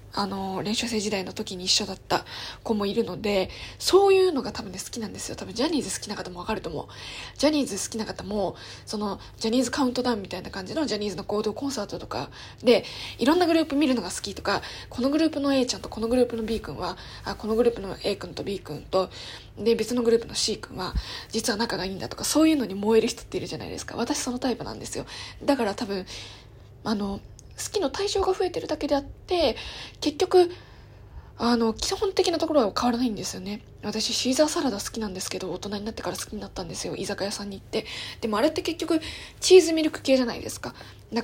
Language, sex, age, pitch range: Japanese, female, 20-39, 200-285 Hz